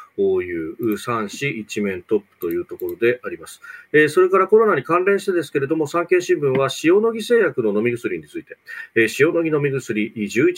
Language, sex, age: Japanese, male, 40-59